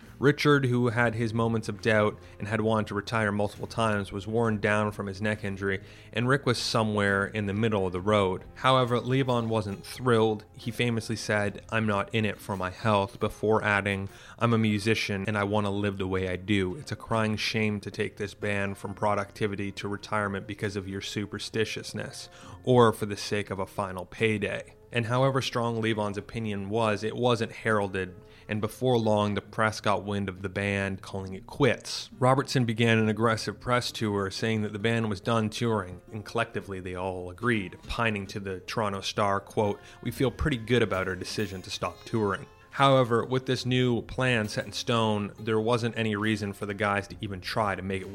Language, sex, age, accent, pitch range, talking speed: English, male, 30-49, American, 100-115 Hz, 200 wpm